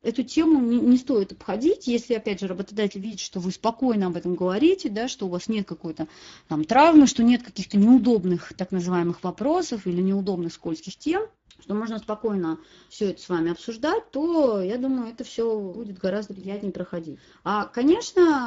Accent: native